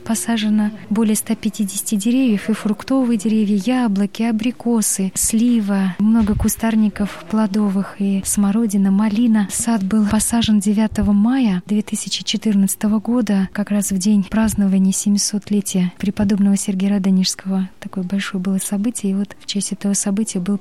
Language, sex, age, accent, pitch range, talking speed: Russian, female, 20-39, native, 190-215 Hz, 125 wpm